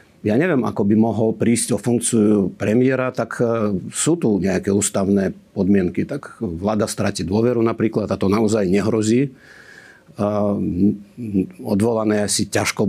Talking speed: 125 wpm